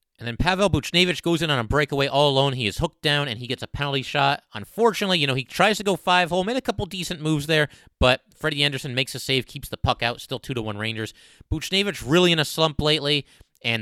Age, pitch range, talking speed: 30-49, 115-150 Hz, 245 wpm